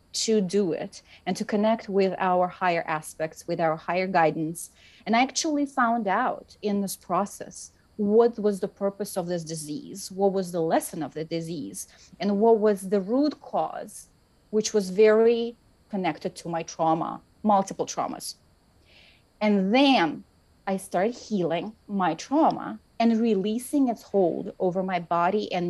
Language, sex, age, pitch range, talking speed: English, female, 30-49, 175-220 Hz, 155 wpm